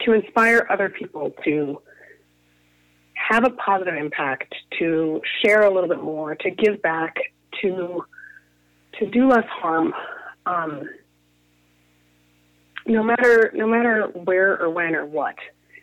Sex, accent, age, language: female, American, 30-49, English